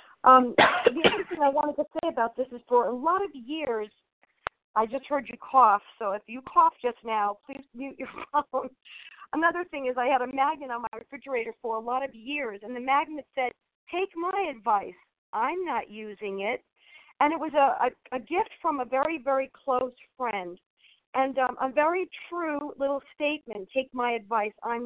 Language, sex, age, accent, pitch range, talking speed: English, female, 50-69, American, 260-355 Hz, 195 wpm